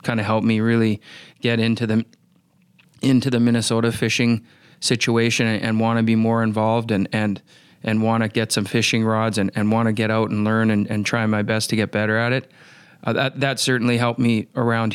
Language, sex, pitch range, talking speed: English, male, 105-115 Hz, 215 wpm